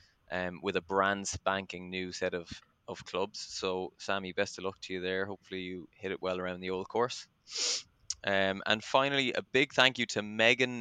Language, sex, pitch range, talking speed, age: English, male, 95-110 Hz, 200 wpm, 20-39